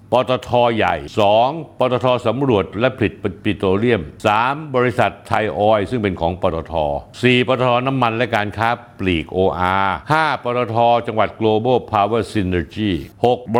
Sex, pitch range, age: male, 95-130 Hz, 60-79